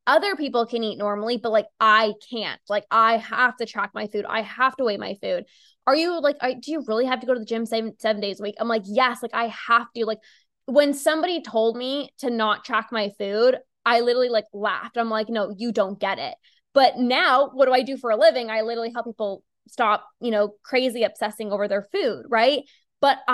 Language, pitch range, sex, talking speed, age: English, 220-260 Hz, female, 235 wpm, 10-29